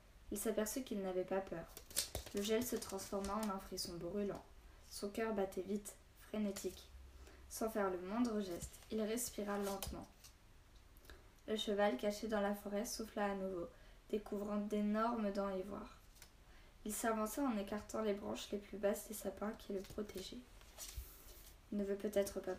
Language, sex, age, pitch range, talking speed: French, female, 10-29, 190-220 Hz, 155 wpm